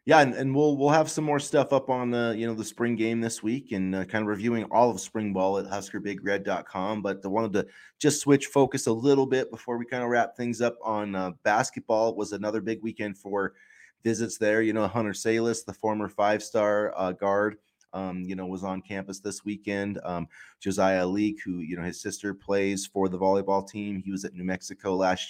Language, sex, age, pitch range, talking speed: English, male, 20-39, 95-115 Hz, 225 wpm